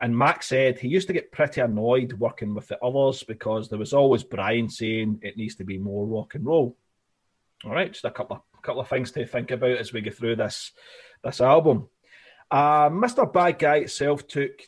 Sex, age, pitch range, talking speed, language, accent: male, 30-49, 105-135 Hz, 210 wpm, English, British